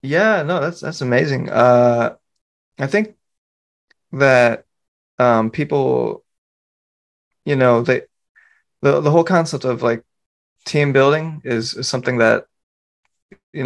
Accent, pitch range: American, 115-135 Hz